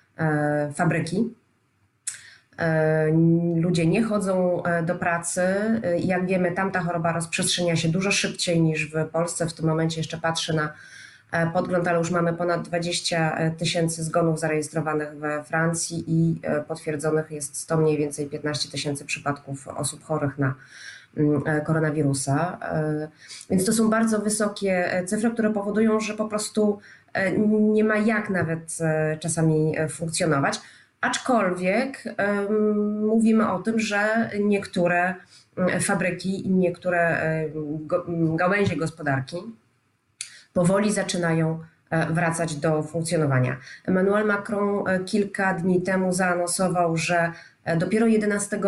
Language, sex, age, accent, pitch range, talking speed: Polish, female, 20-39, native, 160-190 Hz, 110 wpm